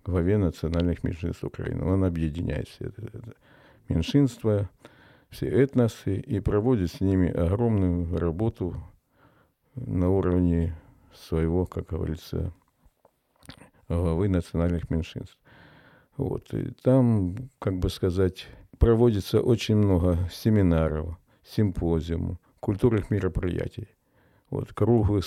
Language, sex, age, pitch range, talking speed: Ukrainian, male, 50-69, 90-110 Hz, 100 wpm